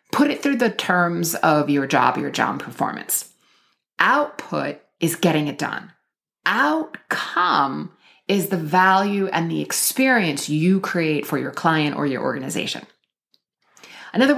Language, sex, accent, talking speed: English, female, American, 135 wpm